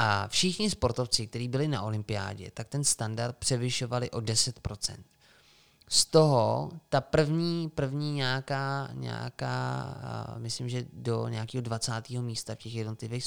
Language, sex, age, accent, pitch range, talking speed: Czech, male, 20-39, native, 110-120 Hz, 130 wpm